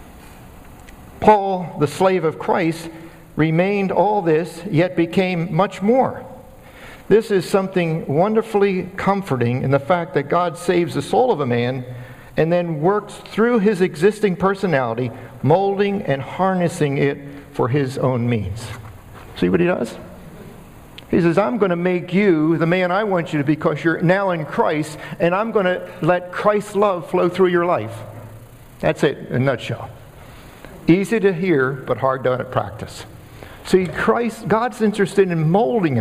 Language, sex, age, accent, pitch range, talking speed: English, male, 50-69, American, 125-185 Hz, 160 wpm